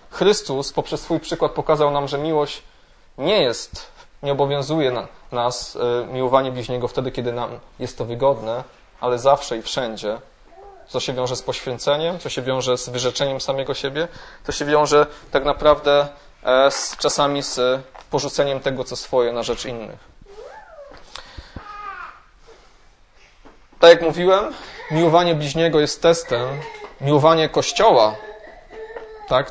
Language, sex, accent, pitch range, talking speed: Polish, male, native, 125-150 Hz, 130 wpm